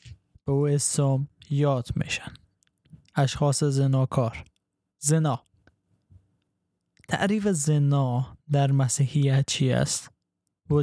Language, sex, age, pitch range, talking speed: Persian, male, 20-39, 130-155 Hz, 80 wpm